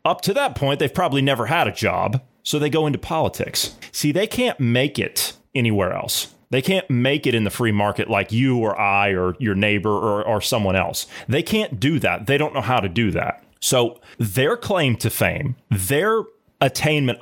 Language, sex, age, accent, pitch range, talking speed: English, male, 30-49, American, 105-135 Hz, 205 wpm